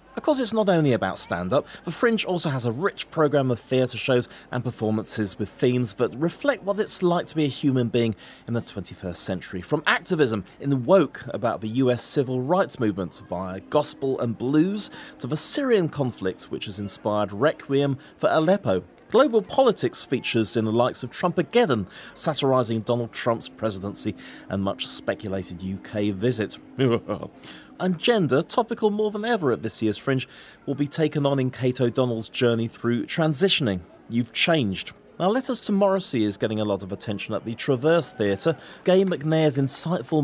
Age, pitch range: 30-49, 110-165 Hz